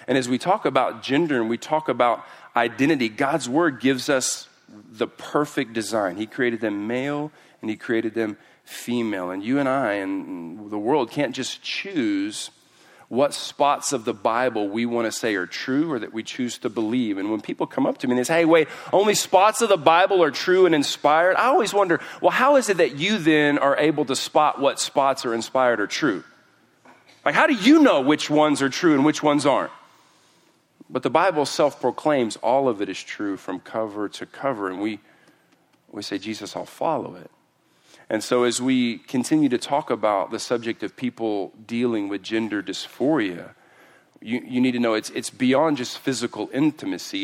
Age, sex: 40-59, male